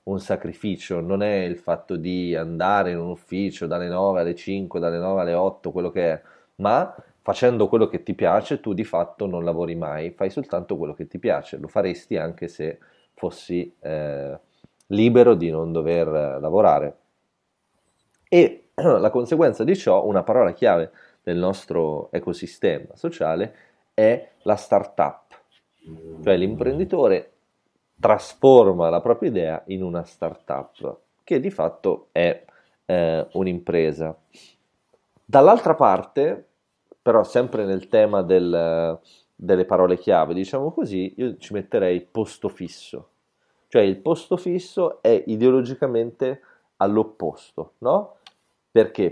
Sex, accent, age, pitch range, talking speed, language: male, native, 30-49, 85-110 Hz, 130 wpm, Italian